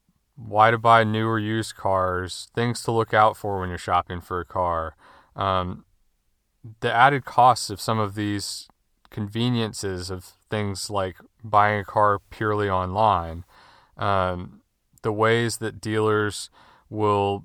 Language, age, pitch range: English, 30-49, 100-115 Hz